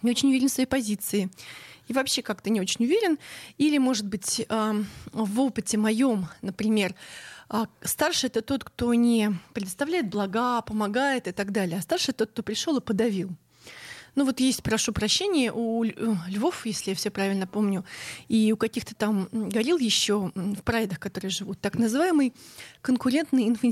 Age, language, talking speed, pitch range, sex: 20-39, Russian, 155 wpm, 200-255 Hz, female